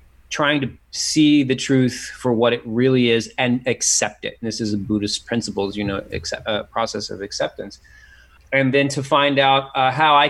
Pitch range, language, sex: 110-135 Hz, English, male